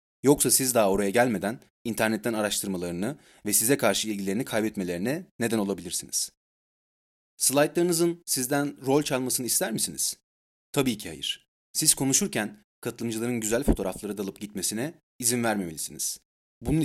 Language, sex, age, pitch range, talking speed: Turkish, male, 30-49, 100-140 Hz, 120 wpm